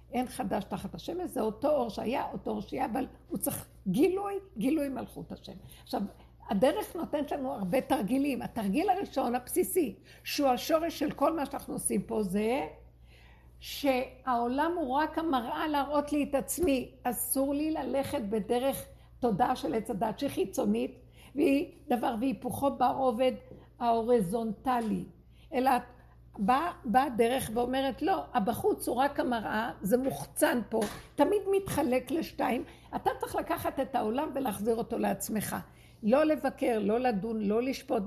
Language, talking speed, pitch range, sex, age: Hebrew, 135 wpm, 230-290 Hz, female, 60-79